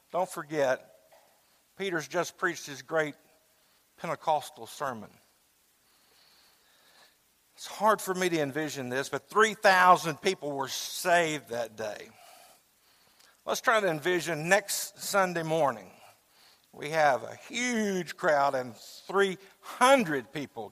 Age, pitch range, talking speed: 50-69, 145-195 Hz, 110 wpm